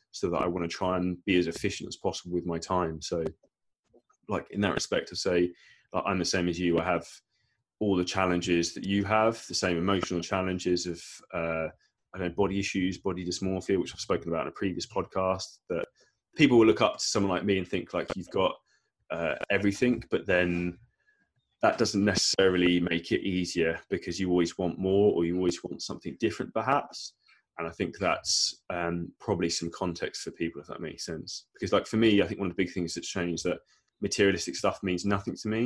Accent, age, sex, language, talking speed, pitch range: British, 20-39, male, English, 215 wpm, 85-95 Hz